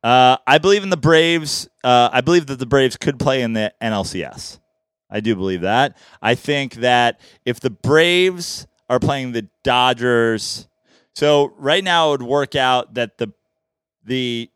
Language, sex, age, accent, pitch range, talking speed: English, male, 30-49, American, 115-145 Hz, 170 wpm